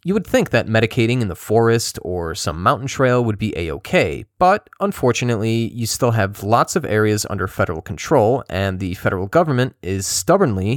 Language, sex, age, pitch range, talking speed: English, male, 30-49, 95-125 Hz, 185 wpm